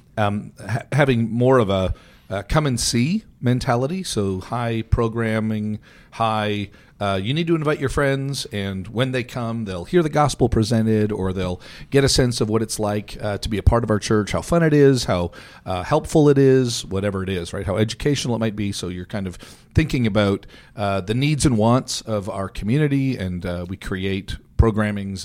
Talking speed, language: 185 wpm, English